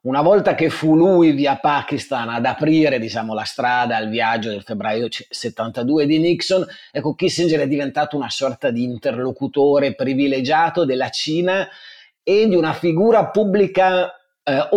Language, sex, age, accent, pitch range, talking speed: Italian, male, 30-49, native, 120-160 Hz, 145 wpm